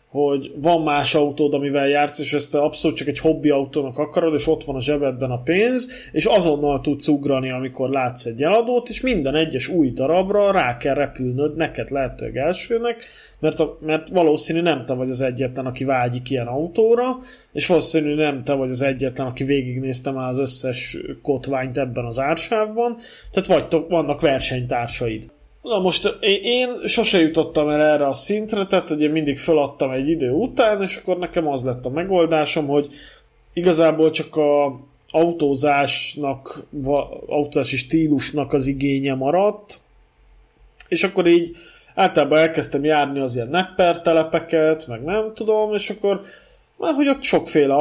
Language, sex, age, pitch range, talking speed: Hungarian, male, 20-39, 140-180 Hz, 155 wpm